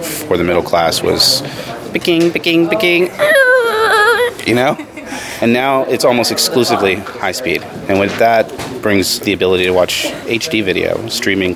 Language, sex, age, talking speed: English, male, 30-49, 145 wpm